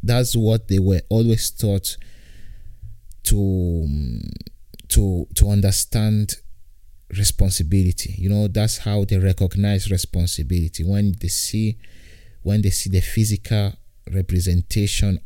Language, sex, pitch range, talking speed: Italian, male, 90-105 Hz, 105 wpm